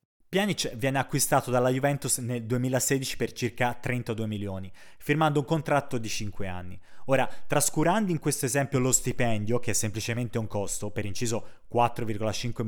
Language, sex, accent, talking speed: Italian, male, native, 150 wpm